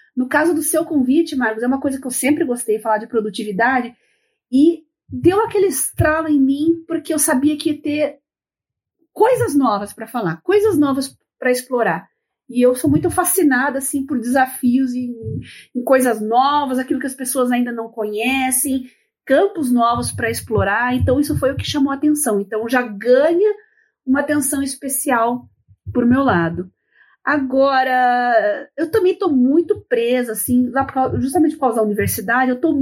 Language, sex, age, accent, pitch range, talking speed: Portuguese, female, 40-59, Brazilian, 230-290 Hz, 165 wpm